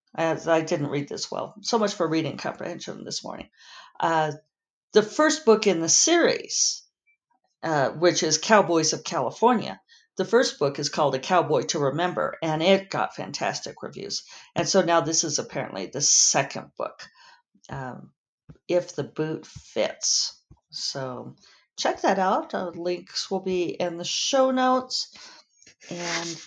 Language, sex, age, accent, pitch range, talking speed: English, female, 50-69, American, 165-225 Hz, 145 wpm